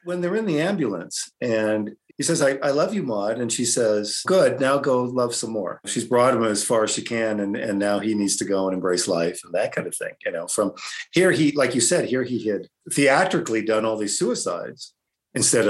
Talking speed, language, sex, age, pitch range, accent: 235 wpm, English, male, 50-69, 100-125 Hz, American